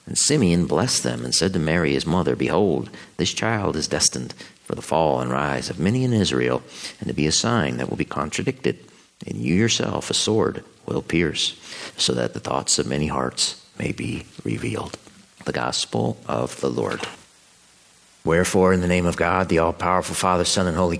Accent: American